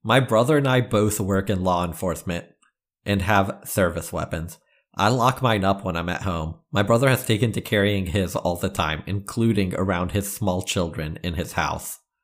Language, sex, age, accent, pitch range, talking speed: English, male, 40-59, American, 90-110 Hz, 190 wpm